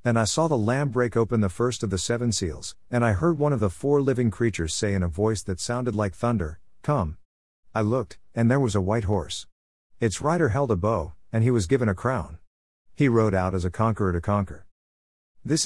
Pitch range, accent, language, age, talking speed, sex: 90-120 Hz, American, English, 50-69, 225 wpm, male